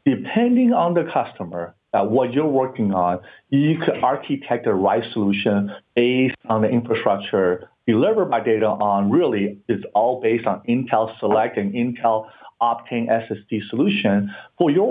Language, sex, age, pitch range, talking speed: English, male, 50-69, 105-135 Hz, 150 wpm